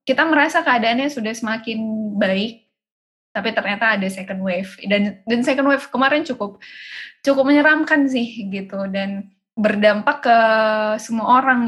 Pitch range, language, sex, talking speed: 195-240 Hz, Indonesian, female, 135 wpm